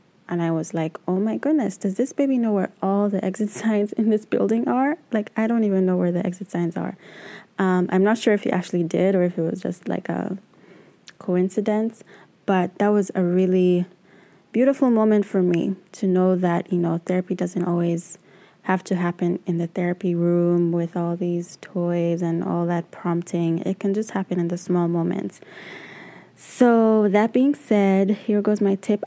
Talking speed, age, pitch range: 195 wpm, 20-39, 175-205 Hz